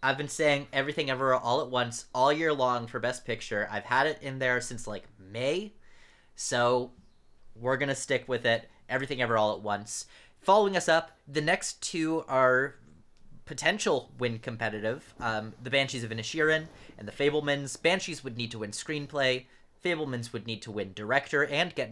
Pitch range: 115-145 Hz